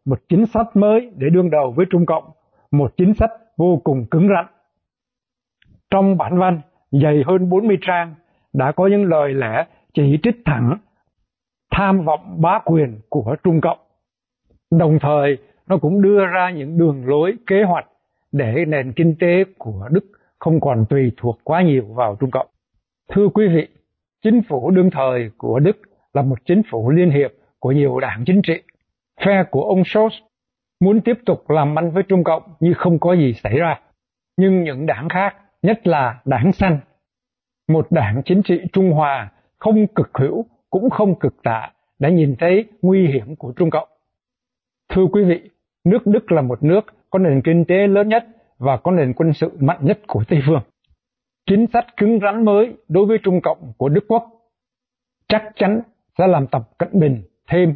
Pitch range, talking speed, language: 145-195 Hz, 185 wpm, Vietnamese